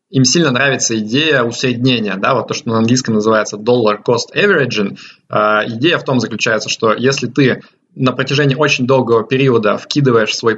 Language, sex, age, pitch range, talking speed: Russian, male, 20-39, 115-140 Hz, 170 wpm